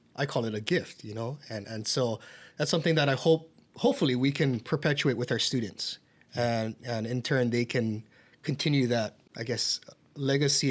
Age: 30-49